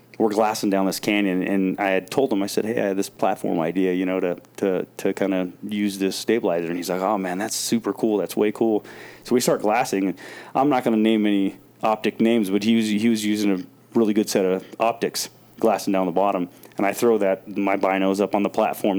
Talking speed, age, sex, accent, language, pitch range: 245 wpm, 30-49, male, American, English, 95-110 Hz